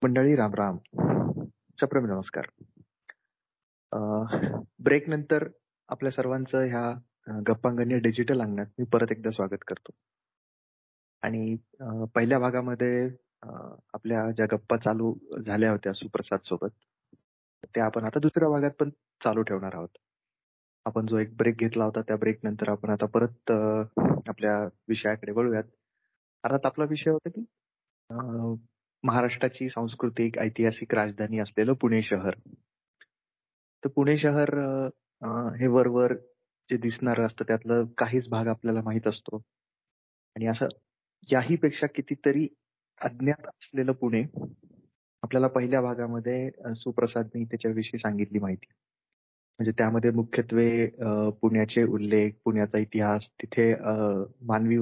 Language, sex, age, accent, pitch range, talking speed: Marathi, male, 30-49, native, 110-125 Hz, 95 wpm